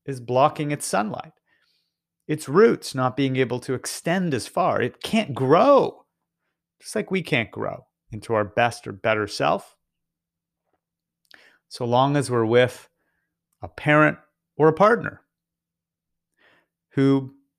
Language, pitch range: English, 115-150 Hz